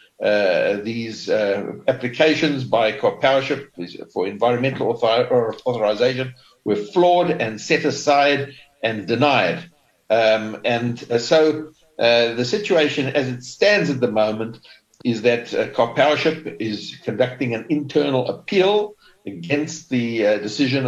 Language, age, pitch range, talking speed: English, 60-79, 120-150 Hz, 125 wpm